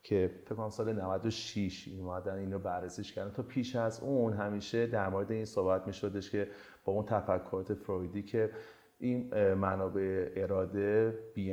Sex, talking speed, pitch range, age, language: male, 150 wpm, 95-120 Hz, 30-49, Persian